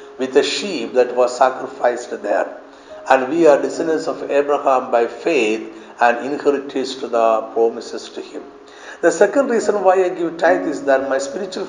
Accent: native